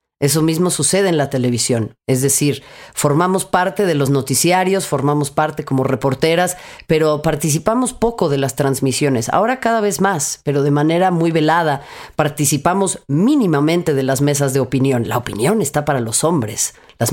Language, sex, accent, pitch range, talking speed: Spanish, female, Mexican, 145-210 Hz, 160 wpm